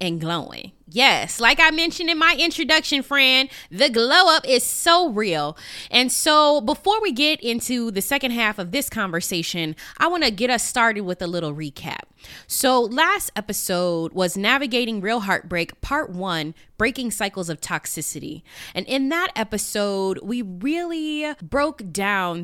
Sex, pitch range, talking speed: female, 185-270 Hz, 160 wpm